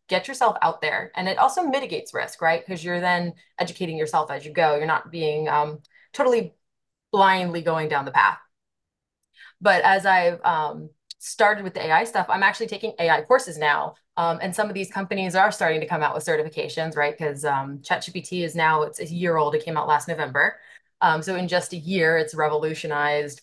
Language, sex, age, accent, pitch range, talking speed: English, female, 20-39, American, 155-195 Hz, 200 wpm